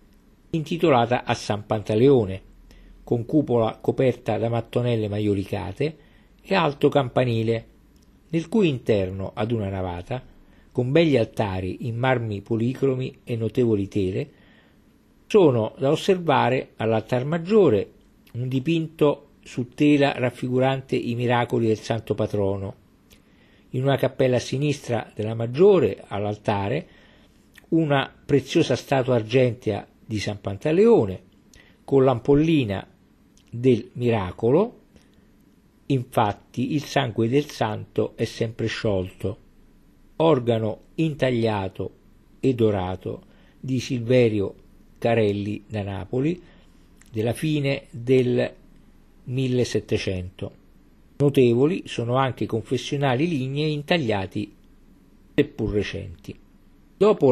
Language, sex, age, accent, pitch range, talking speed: Italian, male, 50-69, native, 105-135 Hz, 95 wpm